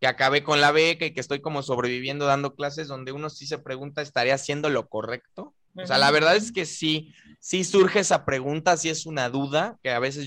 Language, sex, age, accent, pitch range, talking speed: Spanish, male, 20-39, Mexican, 135-175 Hz, 230 wpm